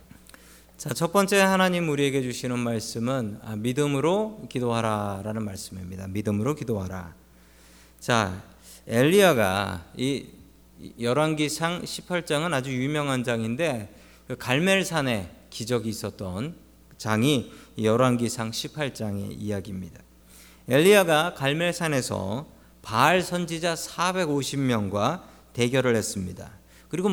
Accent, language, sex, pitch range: native, Korean, male, 105-165 Hz